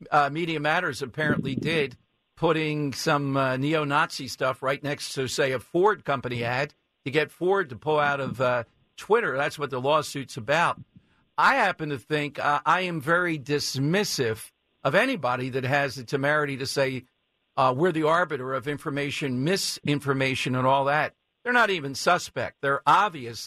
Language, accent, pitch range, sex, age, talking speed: English, American, 135-165 Hz, male, 50-69, 165 wpm